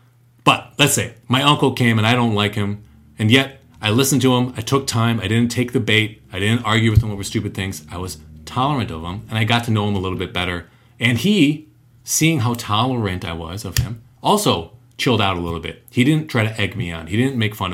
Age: 30-49